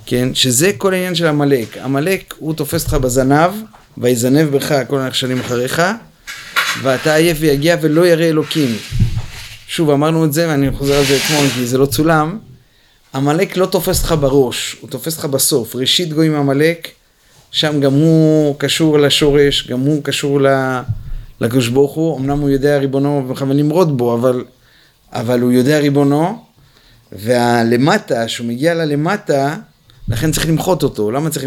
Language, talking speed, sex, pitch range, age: Hebrew, 155 wpm, male, 120-160 Hz, 30-49